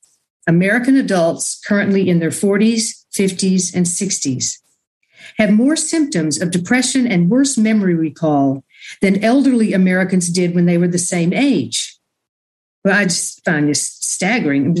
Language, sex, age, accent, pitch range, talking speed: English, female, 50-69, American, 175-215 Hz, 140 wpm